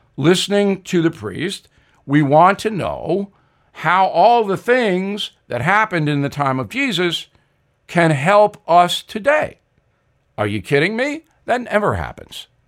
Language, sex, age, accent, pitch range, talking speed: English, male, 60-79, American, 150-185 Hz, 140 wpm